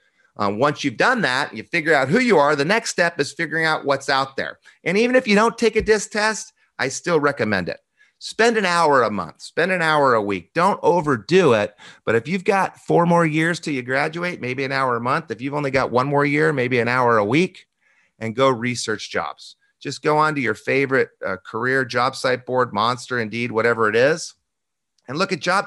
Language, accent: English, American